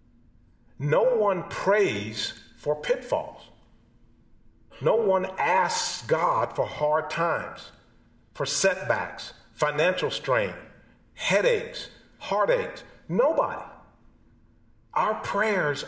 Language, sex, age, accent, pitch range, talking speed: English, male, 50-69, American, 110-140 Hz, 80 wpm